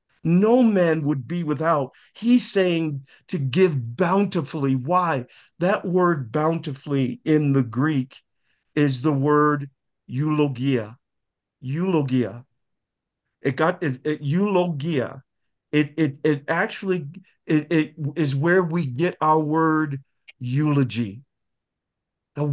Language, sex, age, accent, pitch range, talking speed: English, male, 50-69, American, 145-200 Hz, 110 wpm